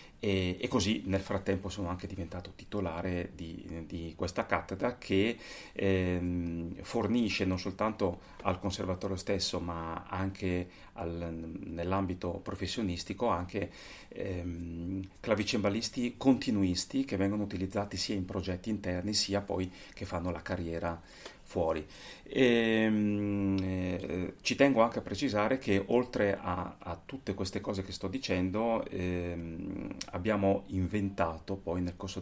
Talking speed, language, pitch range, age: 120 wpm, Italian, 90-100 Hz, 30-49